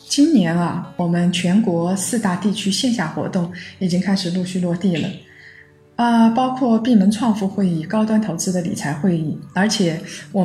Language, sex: Chinese, female